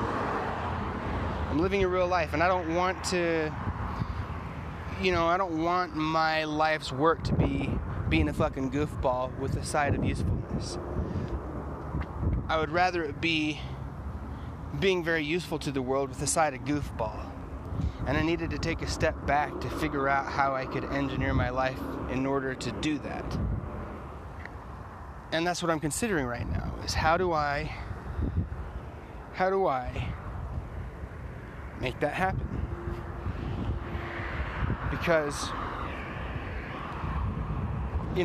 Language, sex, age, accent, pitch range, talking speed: English, male, 30-49, American, 95-160 Hz, 135 wpm